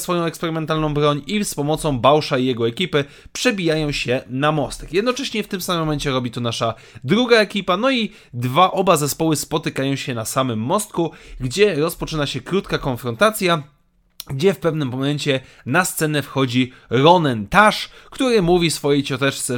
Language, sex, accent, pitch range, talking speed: Polish, male, native, 135-180 Hz, 160 wpm